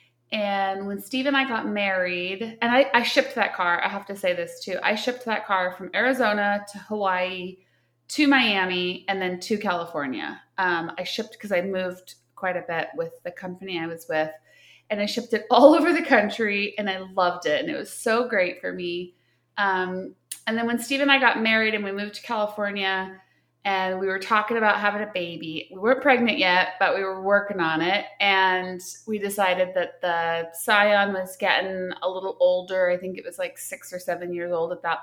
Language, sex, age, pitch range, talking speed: English, female, 30-49, 180-220 Hz, 210 wpm